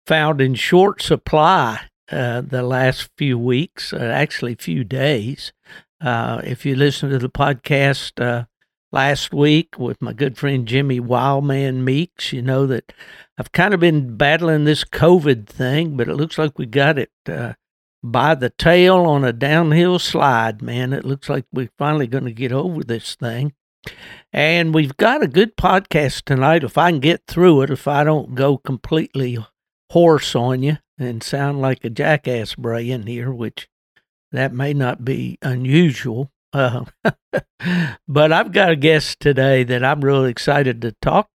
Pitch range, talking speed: 125-155 Hz, 170 wpm